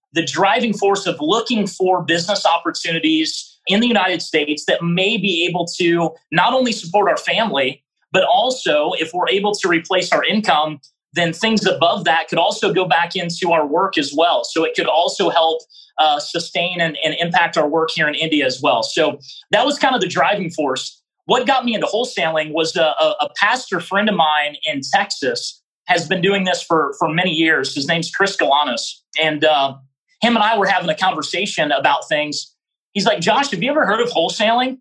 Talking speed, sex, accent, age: 200 wpm, male, American, 30-49